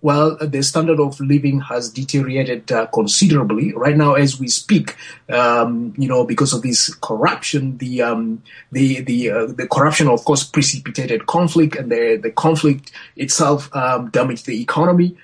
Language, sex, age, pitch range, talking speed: English, male, 30-49, 140-165 Hz, 160 wpm